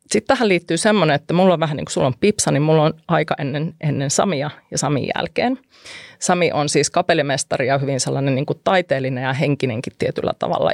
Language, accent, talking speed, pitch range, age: Finnish, native, 200 wpm, 145-190 Hz, 30-49